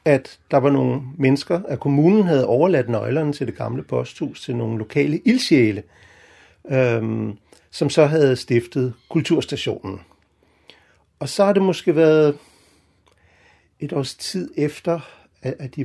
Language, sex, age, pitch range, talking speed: Danish, male, 60-79, 120-175 Hz, 135 wpm